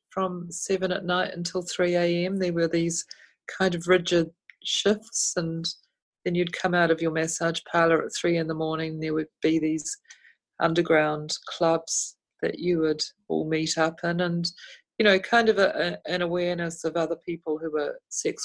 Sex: female